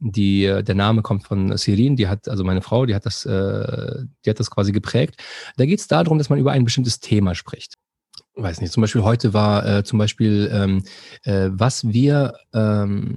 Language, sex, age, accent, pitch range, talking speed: German, male, 40-59, German, 105-130 Hz, 205 wpm